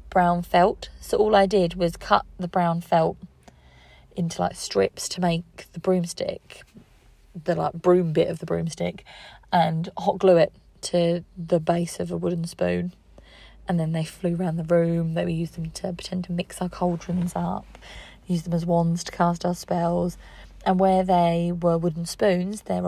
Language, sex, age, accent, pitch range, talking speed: English, female, 30-49, British, 170-185 Hz, 180 wpm